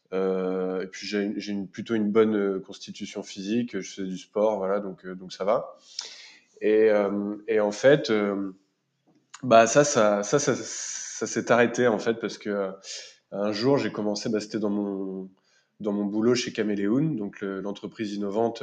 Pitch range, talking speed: 95-110 Hz, 175 wpm